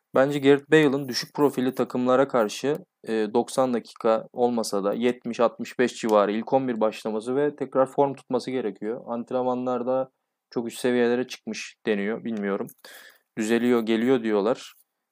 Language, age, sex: Turkish, 20-39, male